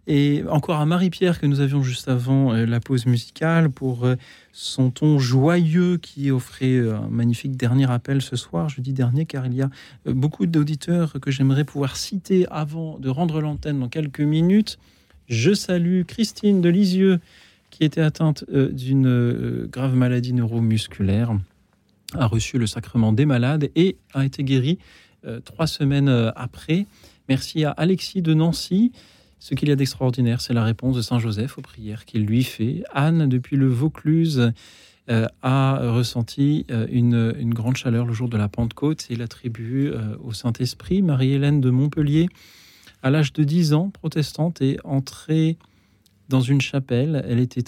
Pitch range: 120-155 Hz